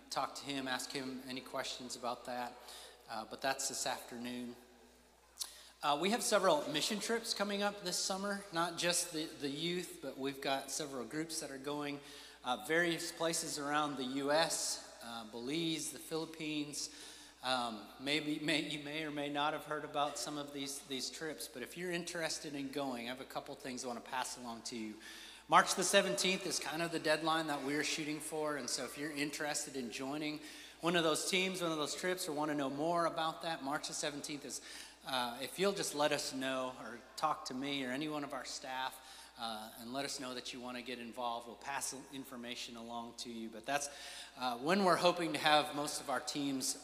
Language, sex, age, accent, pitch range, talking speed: English, male, 30-49, American, 130-160 Hz, 210 wpm